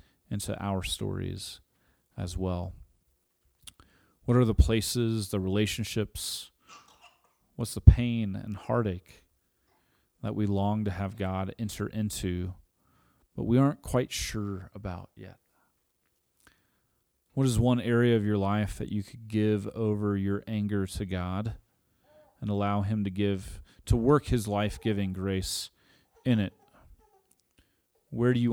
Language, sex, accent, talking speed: English, male, American, 130 wpm